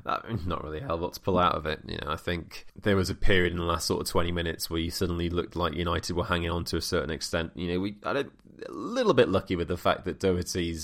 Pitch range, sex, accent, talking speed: 80-95 Hz, male, British, 290 wpm